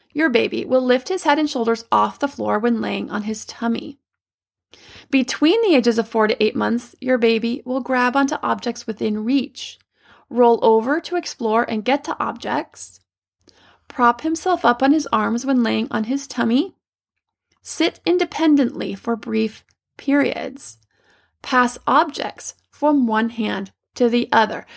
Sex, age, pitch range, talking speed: female, 30-49, 230-280 Hz, 160 wpm